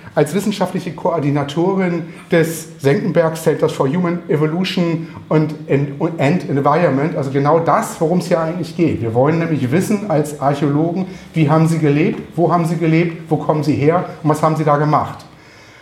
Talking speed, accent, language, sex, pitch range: 165 wpm, German, German, male, 150-175 Hz